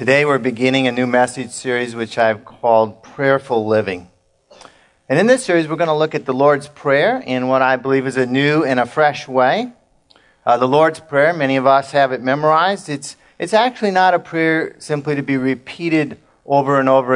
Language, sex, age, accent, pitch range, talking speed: English, male, 40-59, American, 115-145 Hz, 205 wpm